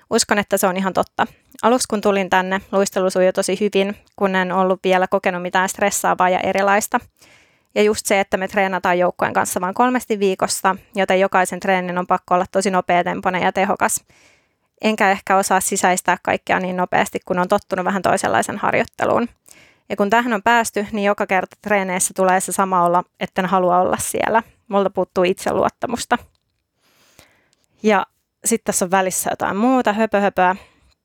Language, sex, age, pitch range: Finnish, female, 20-39, 185-210 Hz